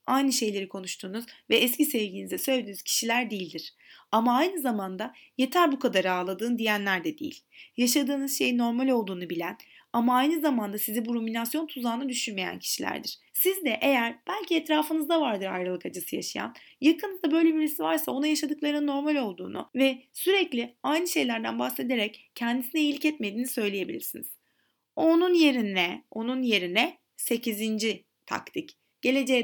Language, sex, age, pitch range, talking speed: Turkish, female, 30-49, 220-305 Hz, 135 wpm